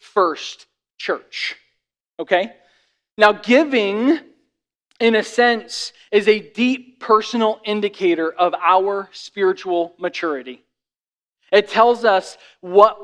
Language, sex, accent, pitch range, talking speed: English, male, American, 170-215 Hz, 95 wpm